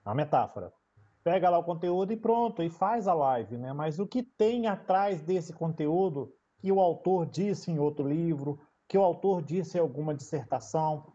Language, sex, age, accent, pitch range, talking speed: Portuguese, male, 40-59, Brazilian, 155-210 Hz, 185 wpm